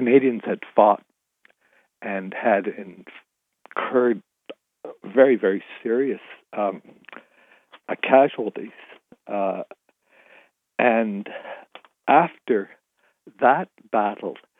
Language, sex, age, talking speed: English, male, 60-79, 70 wpm